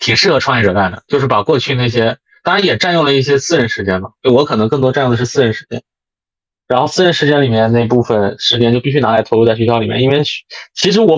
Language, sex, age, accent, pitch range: Chinese, male, 20-39, native, 110-140 Hz